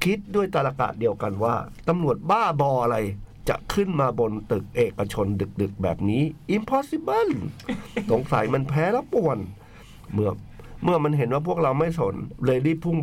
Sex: male